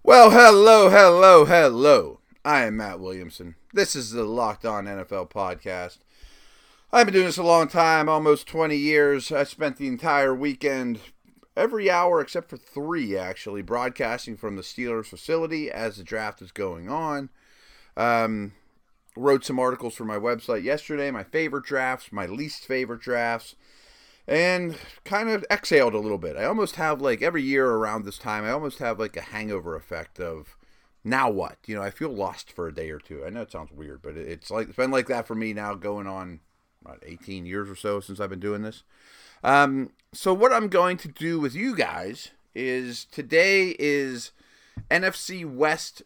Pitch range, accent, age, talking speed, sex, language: 105-155 Hz, American, 30-49, 180 wpm, male, English